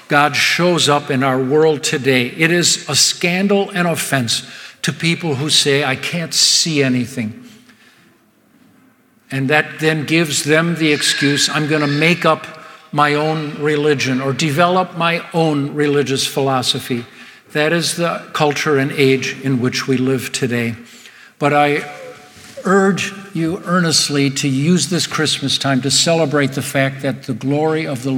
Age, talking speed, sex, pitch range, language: 60-79, 150 wpm, male, 140-175 Hz, English